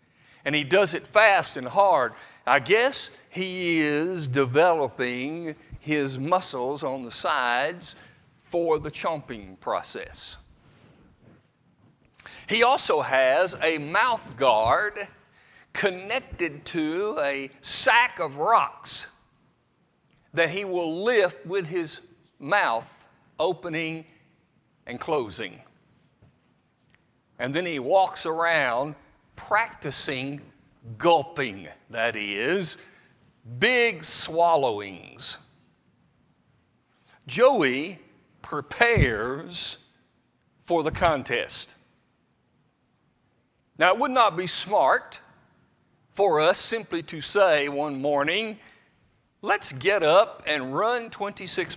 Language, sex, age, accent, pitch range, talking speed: English, male, 60-79, American, 140-185 Hz, 90 wpm